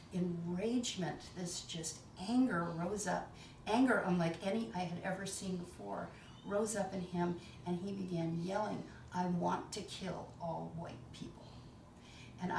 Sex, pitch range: female, 170-205 Hz